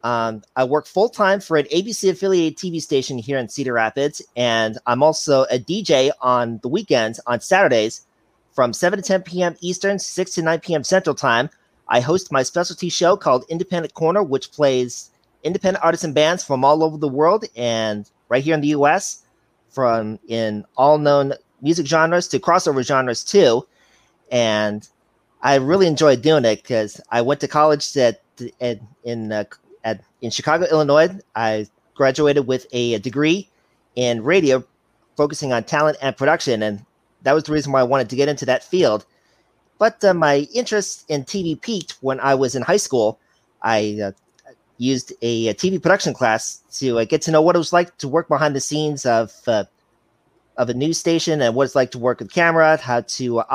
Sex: male